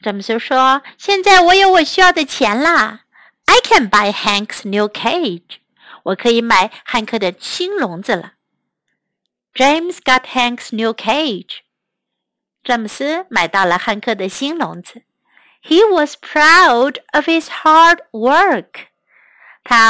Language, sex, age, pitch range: Chinese, female, 50-69, 220-315 Hz